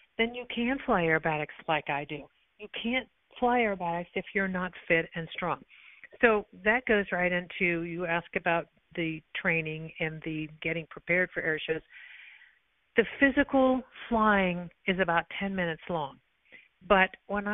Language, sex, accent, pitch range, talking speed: English, female, American, 170-215 Hz, 150 wpm